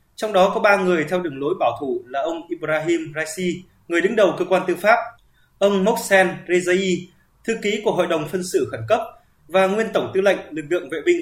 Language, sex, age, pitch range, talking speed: Vietnamese, male, 20-39, 170-200 Hz, 225 wpm